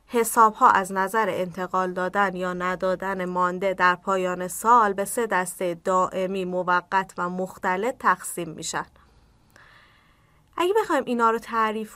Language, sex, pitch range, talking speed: Persian, female, 185-245 Hz, 130 wpm